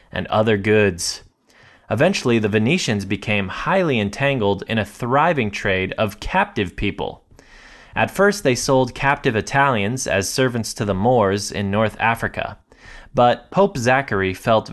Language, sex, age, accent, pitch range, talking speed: English, male, 20-39, American, 105-140 Hz, 140 wpm